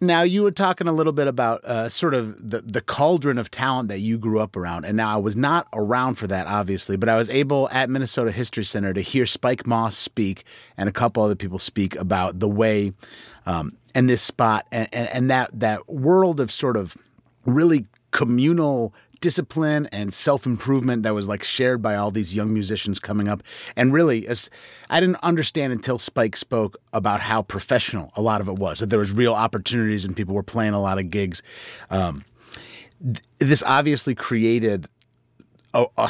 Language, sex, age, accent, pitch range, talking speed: English, male, 30-49, American, 105-135 Hz, 195 wpm